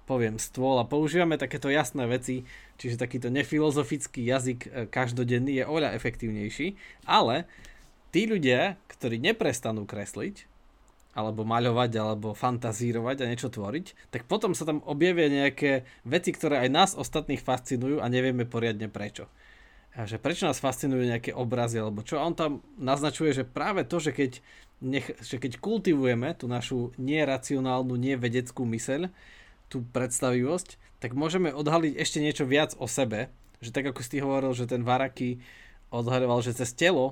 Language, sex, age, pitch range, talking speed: Slovak, male, 20-39, 120-145 Hz, 150 wpm